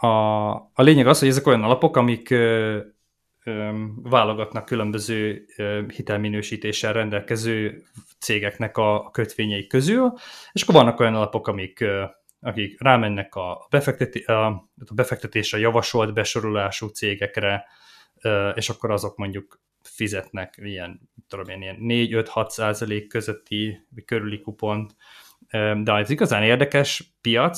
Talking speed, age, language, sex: 105 wpm, 20-39, Hungarian, male